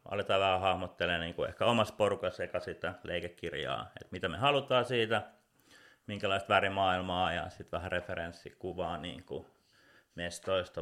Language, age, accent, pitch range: Finnish, 30-49, native, 90-115 Hz